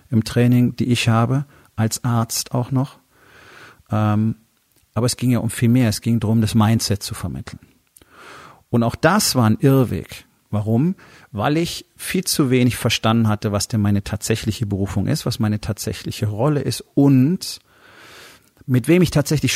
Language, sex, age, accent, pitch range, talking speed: German, male, 40-59, German, 105-125 Hz, 165 wpm